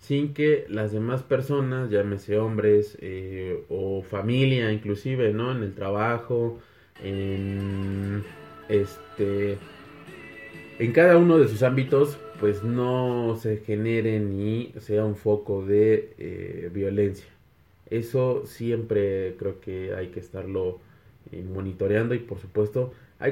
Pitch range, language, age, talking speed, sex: 100-130 Hz, Spanish, 20-39, 120 wpm, male